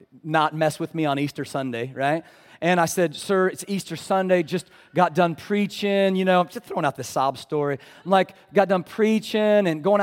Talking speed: 205 wpm